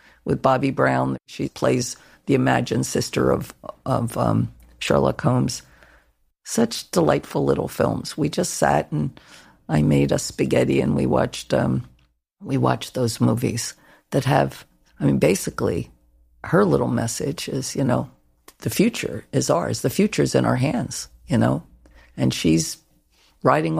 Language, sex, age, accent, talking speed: English, female, 50-69, American, 145 wpm